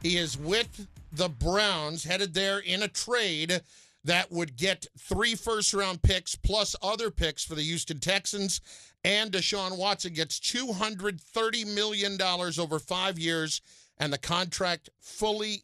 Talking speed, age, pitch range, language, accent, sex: 140 wpm, 50-69, 165-210 Hz, English, American, male